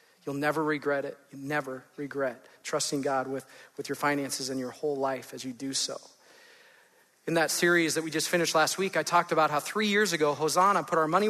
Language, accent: English, American